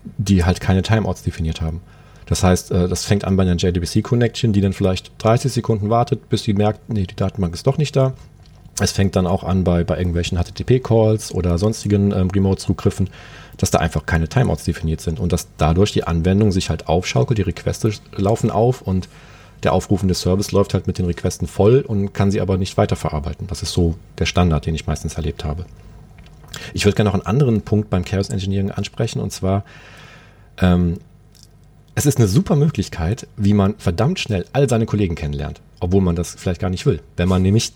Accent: German